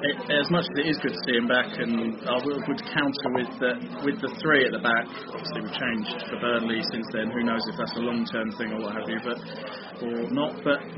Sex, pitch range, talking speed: male, 115-130 Hz, 250 wpm